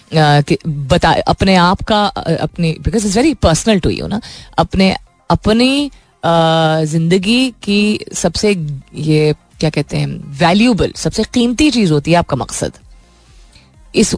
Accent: native